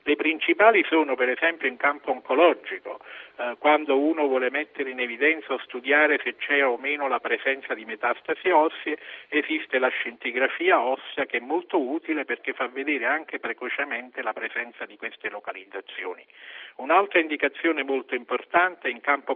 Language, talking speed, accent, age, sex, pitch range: Italian, 160 wpm, native, 50-69, male, 130-160 Hz